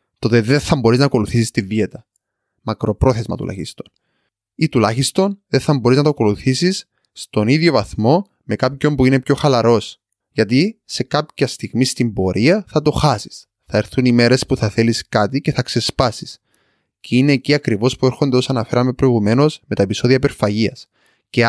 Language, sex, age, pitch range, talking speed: Greek, male, 20-39, 110-145 Hz, 170 wpm